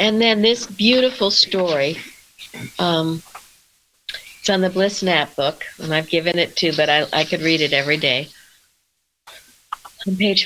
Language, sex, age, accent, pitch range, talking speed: English, female, 60-79, American, 165-195 Hz, 155 wpm